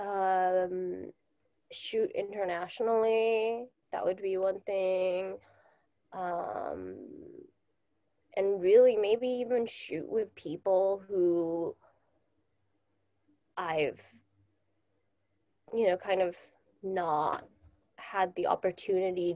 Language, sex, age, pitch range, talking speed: English, female, 20-39, 170-200 Hz, 80 wpm